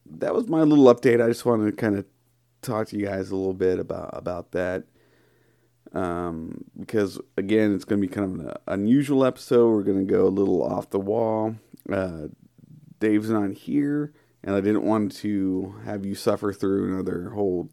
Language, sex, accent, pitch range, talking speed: English, male, American, 95-115 Hz, 195 wpm